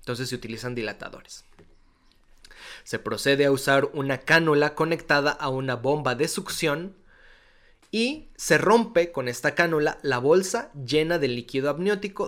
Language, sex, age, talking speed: Spanish, male, 30-49, 135 wpm